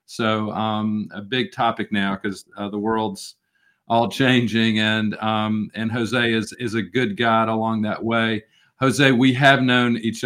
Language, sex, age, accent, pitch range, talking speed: English, male, 40-59, American, 110-125 Hz, 170 wpm